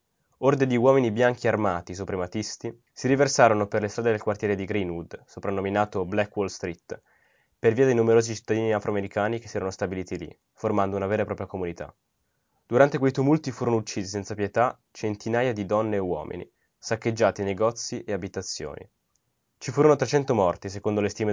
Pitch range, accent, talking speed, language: 100-120 Hz, native, 165 wpm, Italian